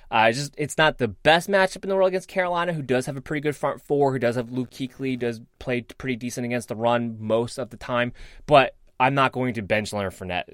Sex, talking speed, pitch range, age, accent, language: male, 250 wpm, 110-130 Hz, 20-39, American, English